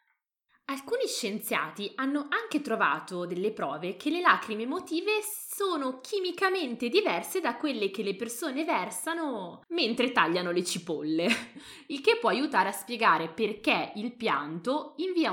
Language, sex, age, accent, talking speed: Italian, female, 20-39, native, 135 wpm